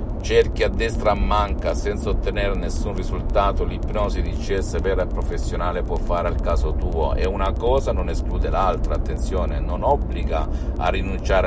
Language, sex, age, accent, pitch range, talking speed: Italian, male, 50-69, native, 75-95 Hz, 155 wpm